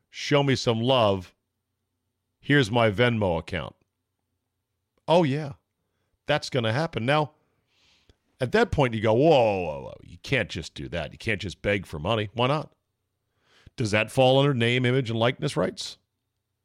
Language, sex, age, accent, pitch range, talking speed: English, male, 50-69, American, 95-130 Hz, 160 wpm